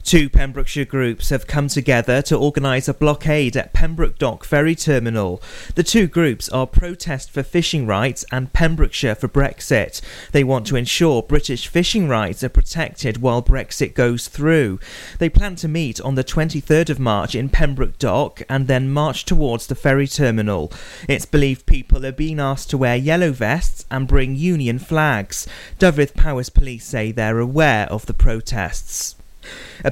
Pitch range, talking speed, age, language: 120-150 Hz, 165 wpm, 30-49, English